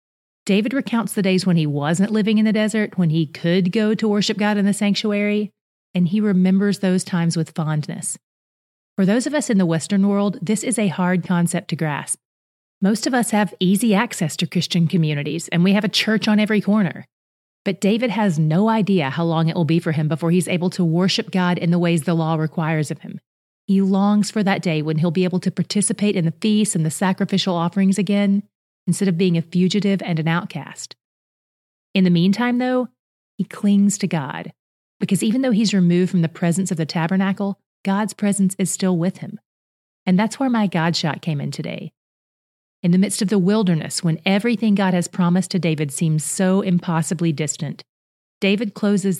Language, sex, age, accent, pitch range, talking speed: English, female, 30-49, American, 170-205 Hz, 200 wpm